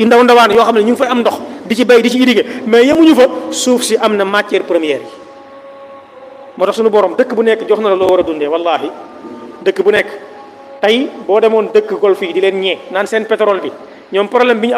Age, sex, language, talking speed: 30-49, male, French, 70 wpm